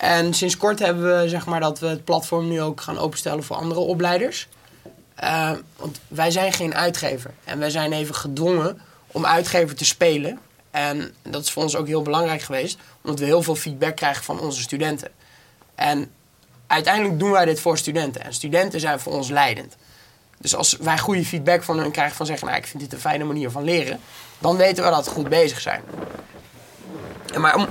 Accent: Dutch